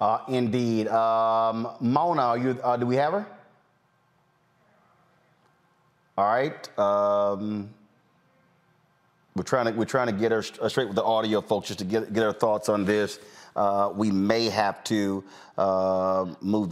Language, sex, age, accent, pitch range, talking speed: English, male, 30-49, American, 95-110 Hz, 150 wpm